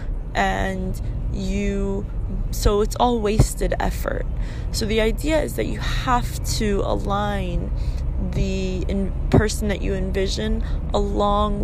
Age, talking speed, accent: 20-39, 120 wpm, American